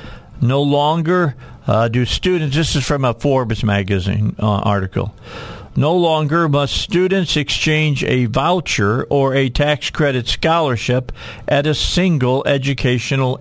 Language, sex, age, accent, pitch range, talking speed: English, male, 50-69, American, 120-150 Hz, 130 wpm